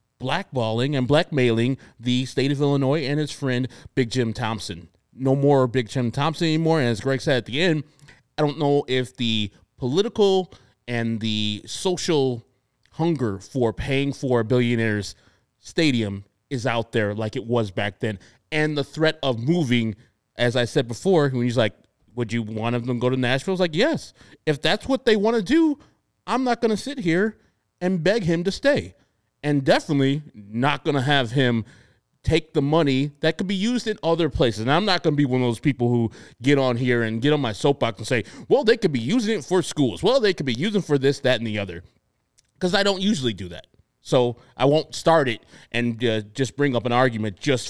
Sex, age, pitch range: male, 30-49, 120-160 Hz